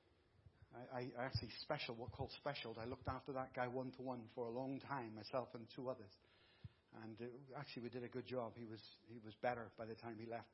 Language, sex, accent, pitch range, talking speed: English, male, British, 115-180 Hz, 220 wpm